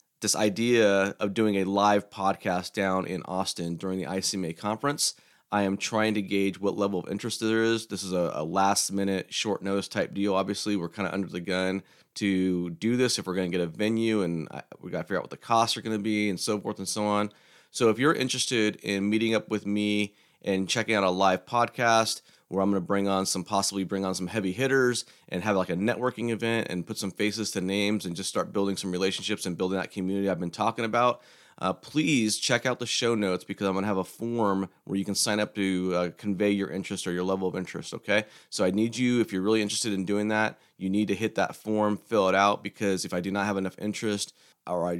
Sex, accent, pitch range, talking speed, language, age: male, American, 95-110 Hz, 245 wpm, English, 30-49